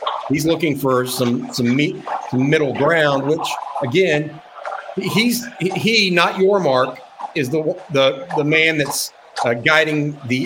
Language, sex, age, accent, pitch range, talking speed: English, male, 50-69, American, 140-175 Hz, 130 wpm